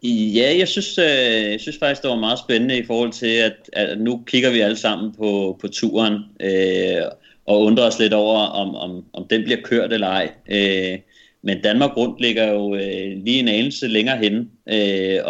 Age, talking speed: 30-49, 200 wpm